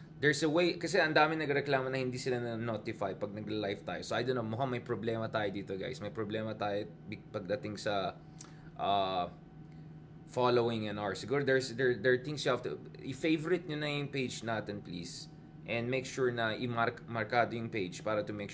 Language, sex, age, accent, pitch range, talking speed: English, male, 20-39, Filipino, 110-140 Hz, 185 wpm